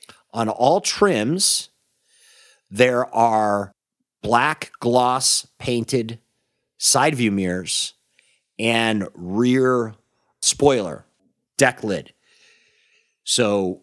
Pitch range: 95-135 Hz